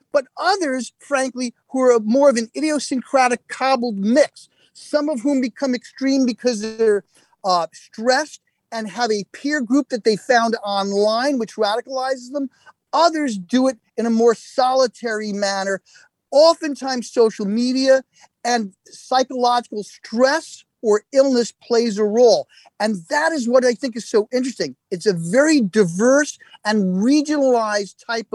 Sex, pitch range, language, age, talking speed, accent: male, 210-265 Hz, English, 40-59, 140 wpm, American